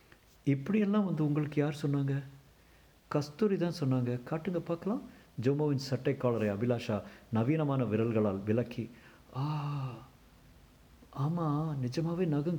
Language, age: Tamil, 50-69